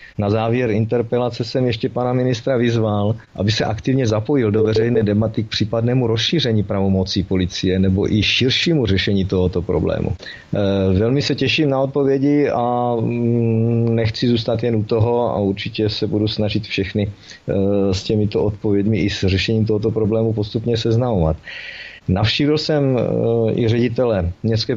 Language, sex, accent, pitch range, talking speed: Czech, male, native, 105-130 Hz, 140 wpm